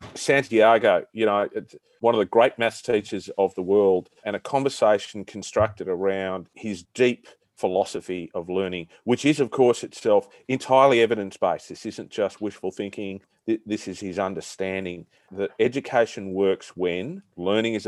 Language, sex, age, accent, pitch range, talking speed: English, male, 40-59, Australian, 95-120 Hz, 150 wpm